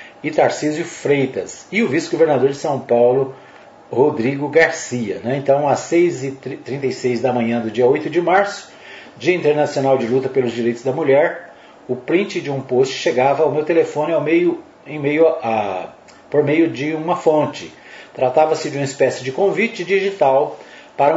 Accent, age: Brazilian, 40-59